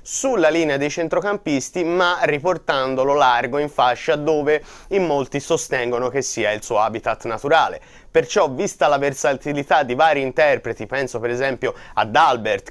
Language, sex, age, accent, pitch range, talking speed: Italian, male, 30-49, native, 125-160 Hz, 145 wpm